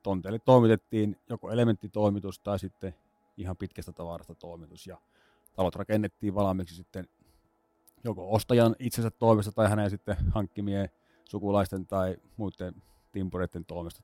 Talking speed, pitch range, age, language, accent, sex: 120 wpm, 90-110 Hz, 30-49, Finnish, native, male